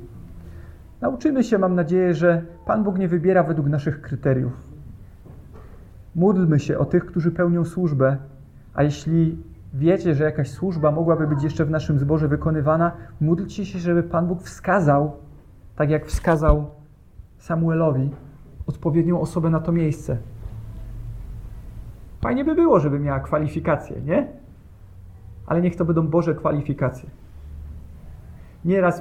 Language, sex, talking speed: Polish, male, 125 wpm